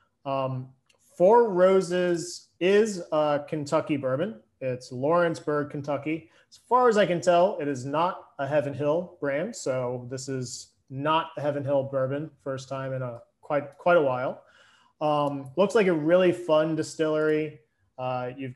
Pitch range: 130-165 Hz